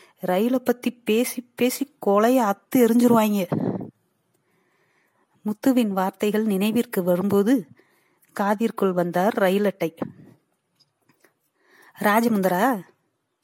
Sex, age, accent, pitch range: female, 30-49, native, 190-245 Hz